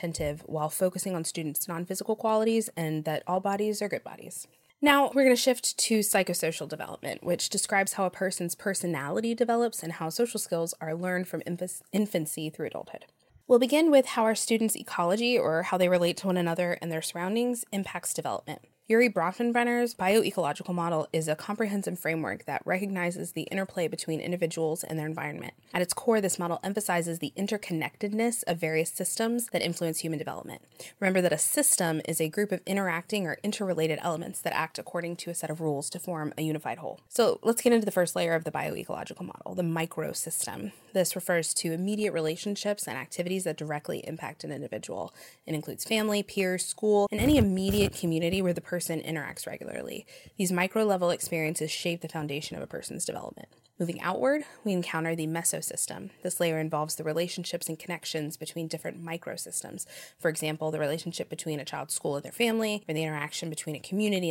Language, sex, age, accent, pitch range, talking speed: English, female, 20-39, American, 160-200 Hz, 185 wpm